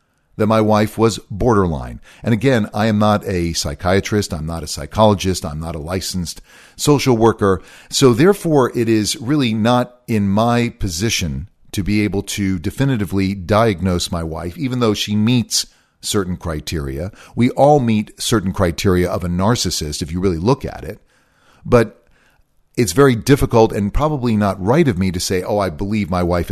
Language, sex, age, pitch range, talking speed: English, male, 40-59, 90-120 Hz, 170 wpm